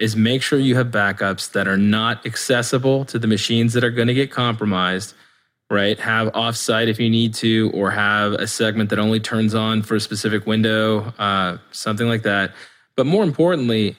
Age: 20-39